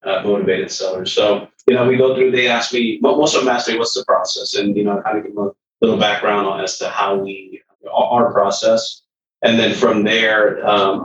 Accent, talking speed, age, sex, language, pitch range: American, 230 wpm, 30-49, male, English, 100-125 Hz